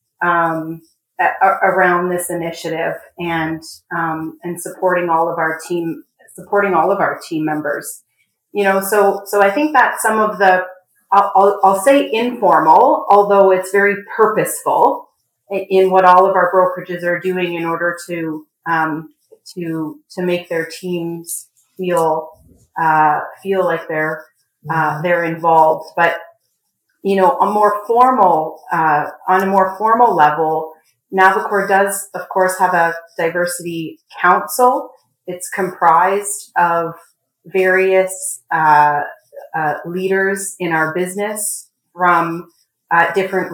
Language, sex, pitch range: English, female, 165-195 Hz